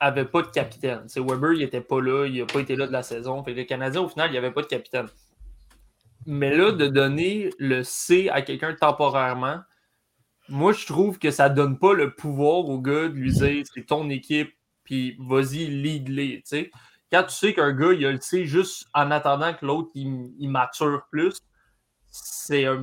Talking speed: 210 wpm